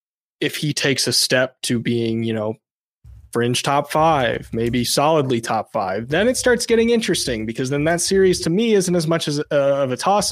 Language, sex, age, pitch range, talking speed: English, male, 20-39, 120-150 Hz, 205 wpm